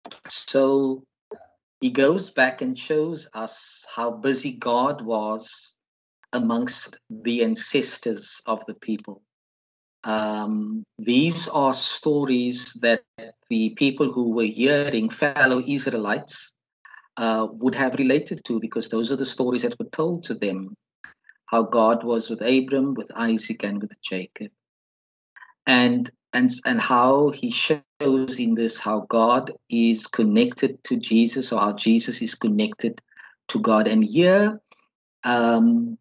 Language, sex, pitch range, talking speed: English, male, 110-145 Hz, 130 wpm